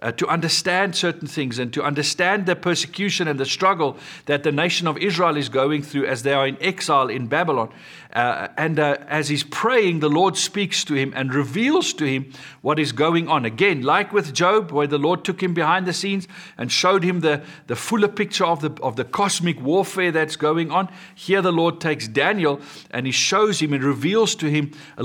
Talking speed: 215 wpm